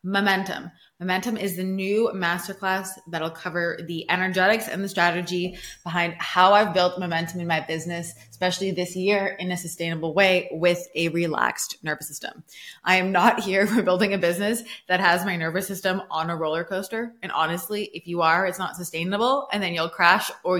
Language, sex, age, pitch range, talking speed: English, female, 20-39, 165-195 Hz, 185 wpm